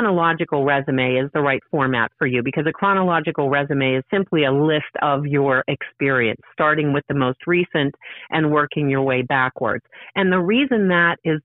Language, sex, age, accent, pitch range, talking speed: English, female, 40-59, American, 140-180 Hz, 180 wpm